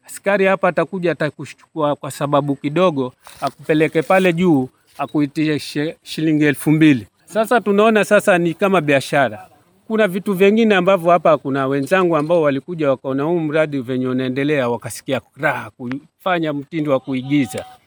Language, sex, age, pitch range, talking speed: Swahili, male, 40-59, 130-180 Hz, 130 wpm